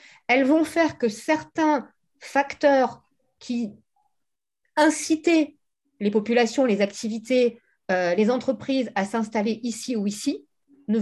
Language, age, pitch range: French, 40-59, 225-285 Hz